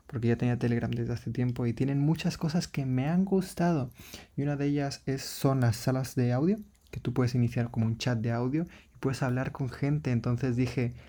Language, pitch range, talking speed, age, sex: Spanish, 120-140 Hz, 220 wpm, 20-39, male